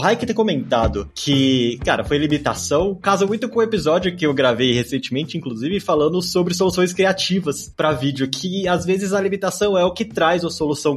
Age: 20-39